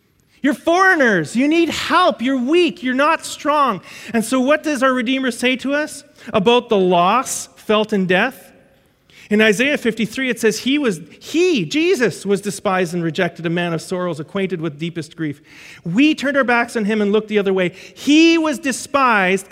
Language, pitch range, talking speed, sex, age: English, 180-250 Hz, 185 wpm, male, 40-59